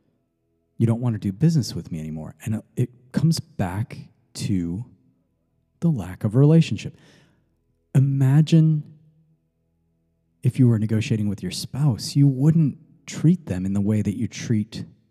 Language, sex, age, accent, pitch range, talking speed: English, male, 30-49, American, 95-140 Hz, 145 wpm